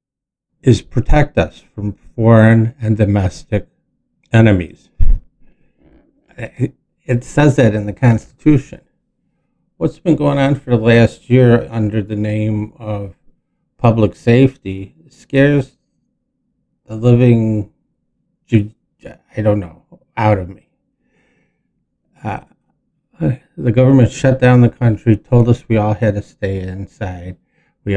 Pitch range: 100-120 Hz